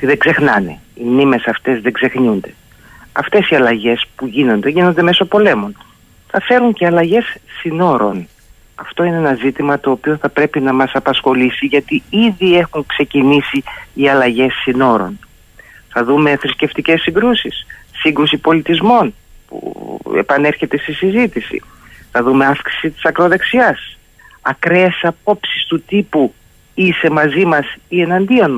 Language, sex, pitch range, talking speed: Greek, male, 130-190 Hz, 130 wpm